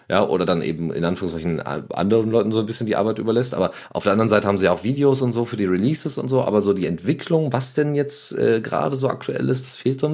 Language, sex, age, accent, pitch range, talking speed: German, male, 30-49, German, 85-125 Hz, 280 wpm